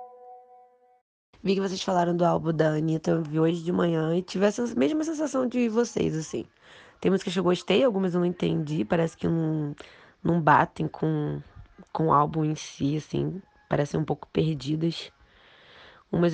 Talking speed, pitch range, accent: 165 wpm, 160-215 Hz, Brazilian